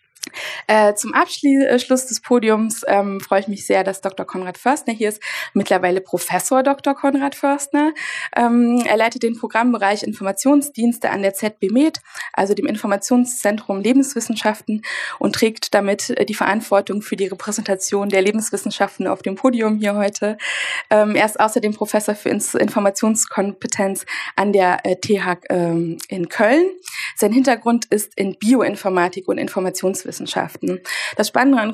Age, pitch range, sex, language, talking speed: 20-39, 195-245 Hz, female, German, 145 wpm